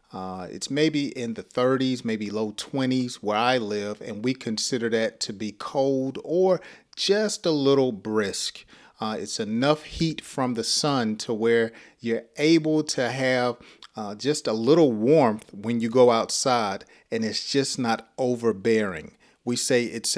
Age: 40-59